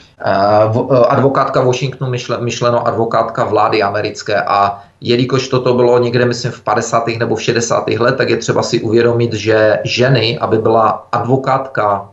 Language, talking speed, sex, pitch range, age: Czech, 150 wpm, male, 115-125 Hz, 30-49